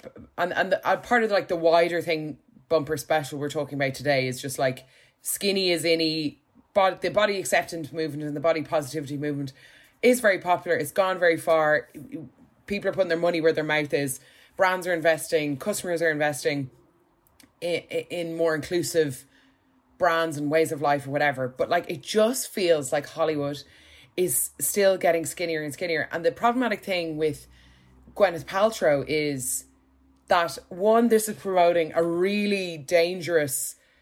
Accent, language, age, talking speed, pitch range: Irish, English, 20-39, 165 wpm, 150-190 Hz